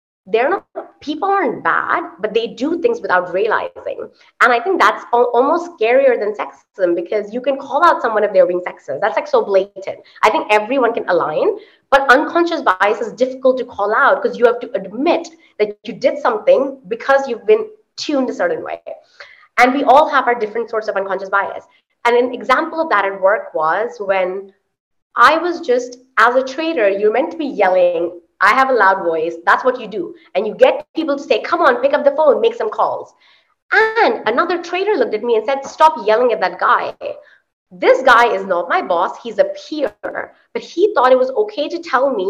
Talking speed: 210 wpm